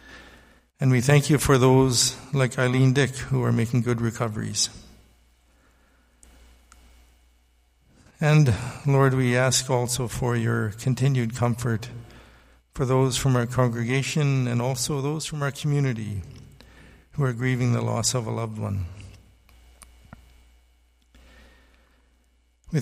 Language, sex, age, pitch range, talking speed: English, male, 60-79, 90-130 Hz, 115 wpm